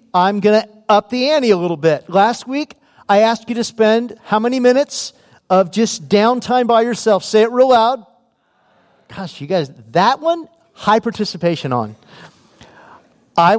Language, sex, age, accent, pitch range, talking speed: English, male, 40-59, American, 170-230 Hz, 165 wpm